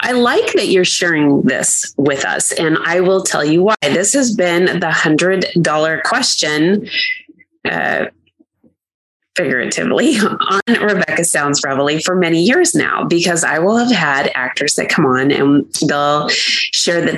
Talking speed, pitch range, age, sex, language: 155 wpm, 150-195 Hz, 20-39, female, English